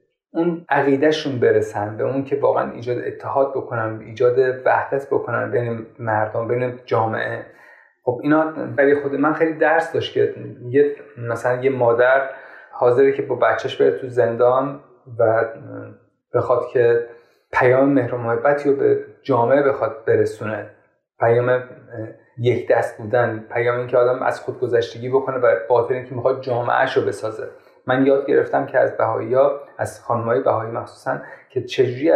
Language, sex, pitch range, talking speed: Persian, male, 120-165 Hz, 145 wpm